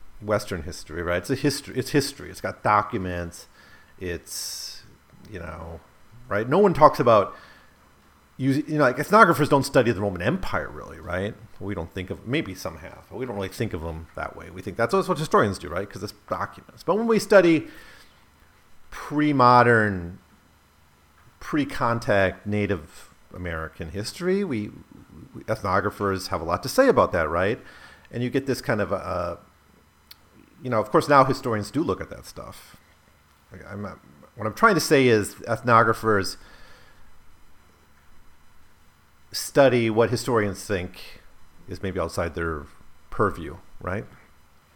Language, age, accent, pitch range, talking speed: English, 40-59, American, 85-130 Hz, 150 wpm